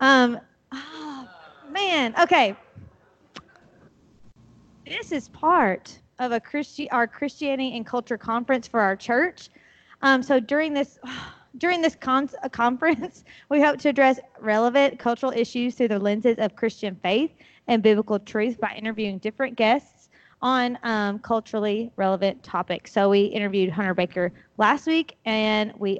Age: 30-49